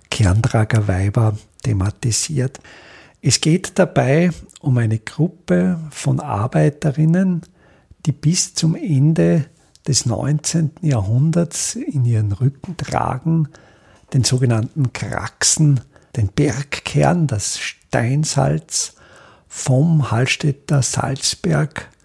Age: 50-69